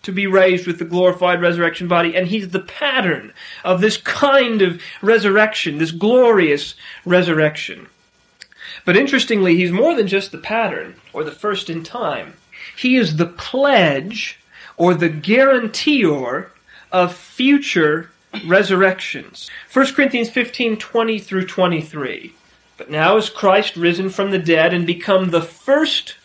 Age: 30-49